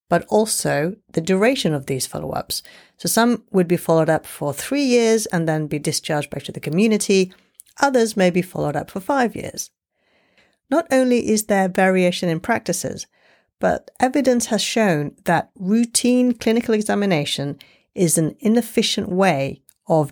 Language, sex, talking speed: English, female, 160 wpm